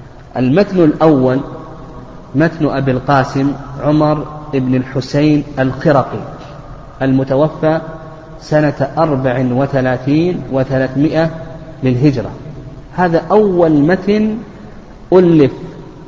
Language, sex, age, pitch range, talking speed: Arabic, male, 40-59, 130-160 Hz, 65 wpm